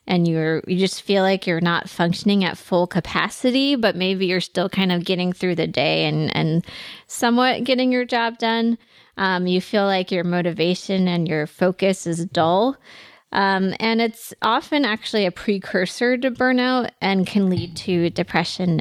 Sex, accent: female, American